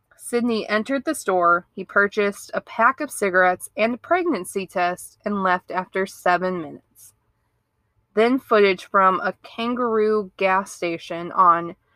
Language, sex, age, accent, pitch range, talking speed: English, female, 20-39, American, 175-230 Hz, 135 wpm